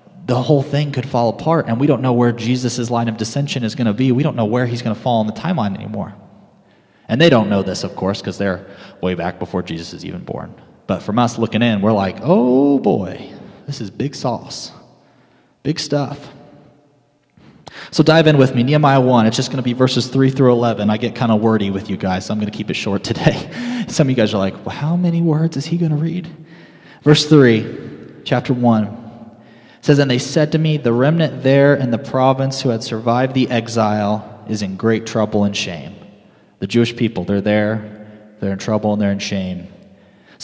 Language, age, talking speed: English, 30-49, 220 wpm